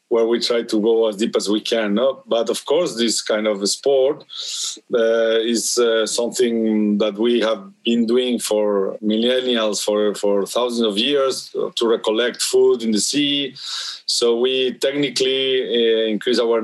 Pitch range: 105-120 Hz